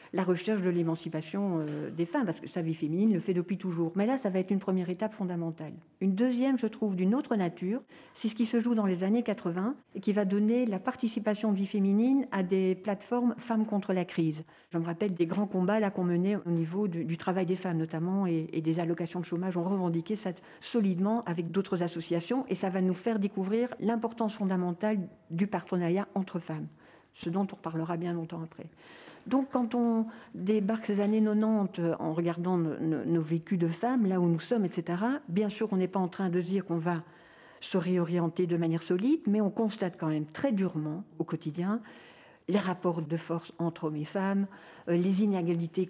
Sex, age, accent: female, 50-69, French